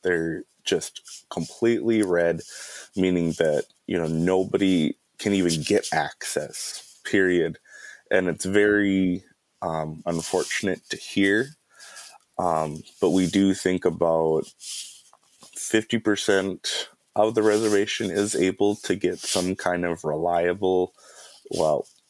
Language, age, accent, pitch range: English, 30-49, American, 85-110 Hz